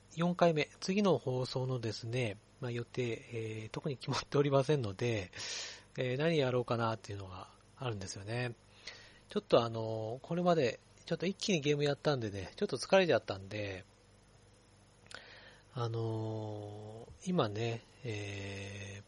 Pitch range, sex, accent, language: 105-140 Hz, male, native, Japanese